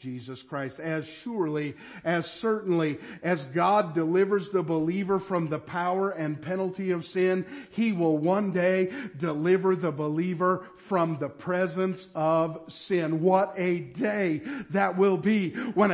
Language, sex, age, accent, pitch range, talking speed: English, male, 50-69, American, 165-230 Hz, 140 wpm